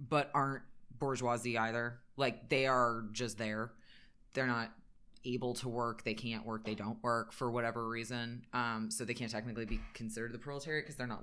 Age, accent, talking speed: 20-39, American, 185 wpm